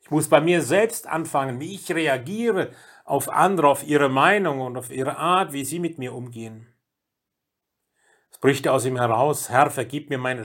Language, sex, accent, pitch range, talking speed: German, male, German, 130-165 Hz, 180 wpm